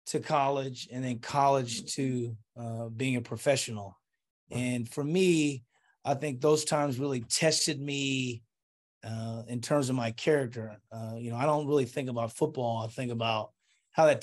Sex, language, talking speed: male, English, 170 wpm